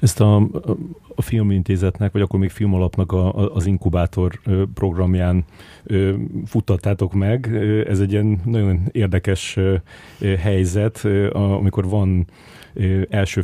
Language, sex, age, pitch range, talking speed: Hungarian, male, 30-49, 90-105 Hz, 115 wpm